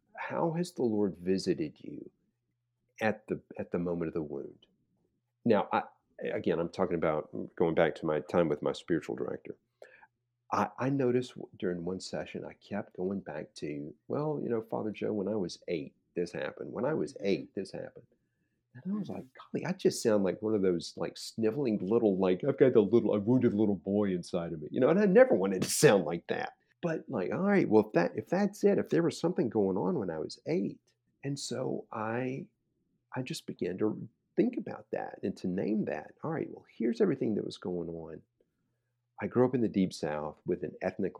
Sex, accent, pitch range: male, American, 80-120 Hz